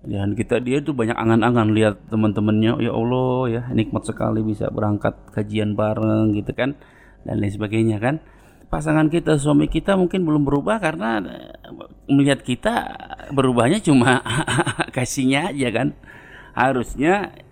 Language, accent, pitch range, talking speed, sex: Indonesian, native, 110-130 Hz, 135 wpm, male